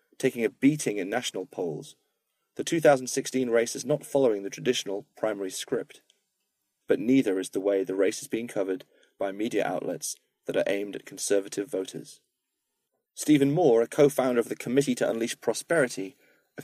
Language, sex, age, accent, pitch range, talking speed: English, male, 30-49, British, 115-145 Hz, 165 wpm